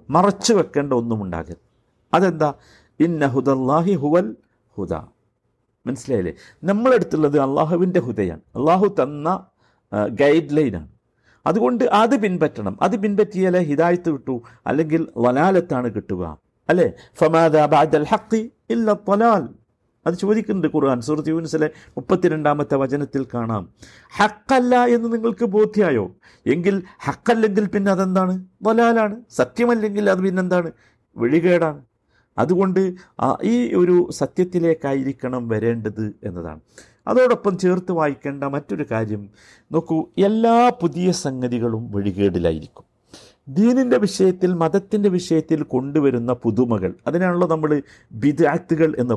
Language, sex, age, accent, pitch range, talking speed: Malayalam, male, 50-69, native, 120-190 Hz, 90 wpm